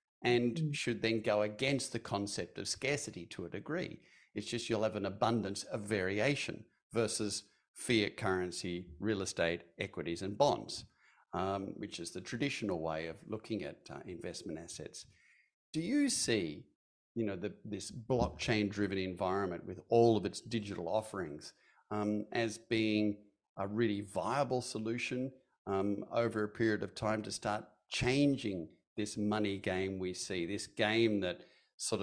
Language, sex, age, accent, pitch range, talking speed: English, male, 50-69, Australian, 95-115 Hz, 150 wpm